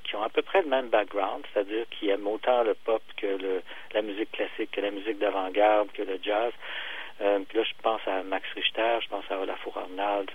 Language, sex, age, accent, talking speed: French, male, 50-69, French, 220 wpm